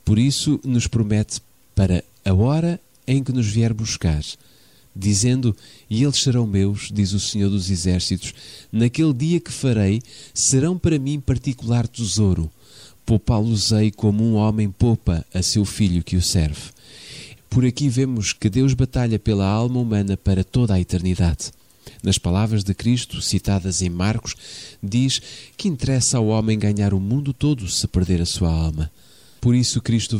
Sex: male